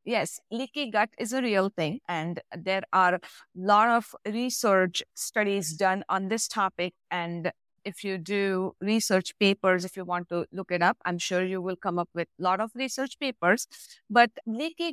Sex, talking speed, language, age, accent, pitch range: female, 185 wpm, English, 50-69, Indian, 185-245 Hz